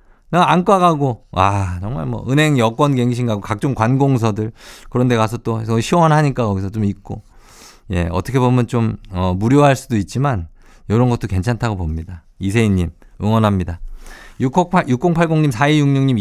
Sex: male